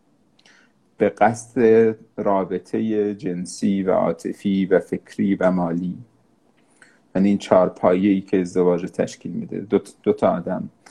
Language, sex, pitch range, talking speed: Persian, male, 95-105 Hz, 115 wpm